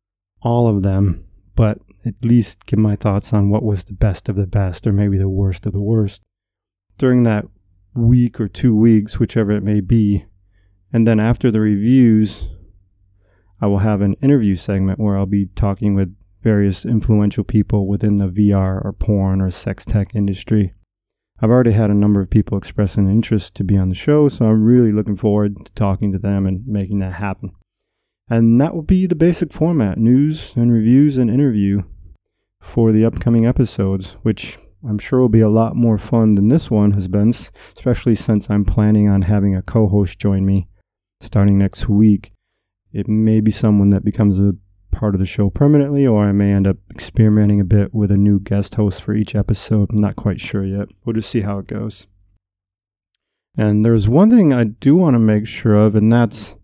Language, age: English, 30-49